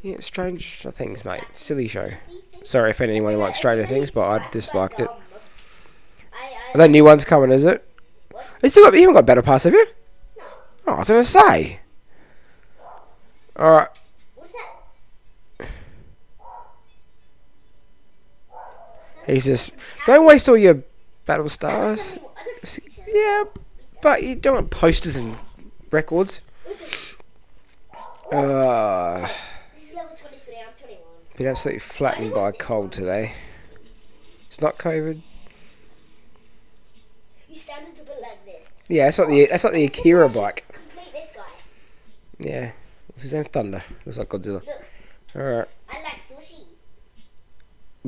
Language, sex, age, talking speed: English, male, 20-39, 110 wpm